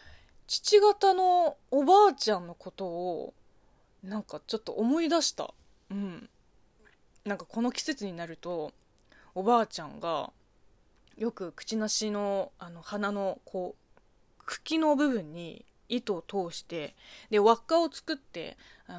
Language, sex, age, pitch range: Japanese, female, 20-39, 185-275 Hz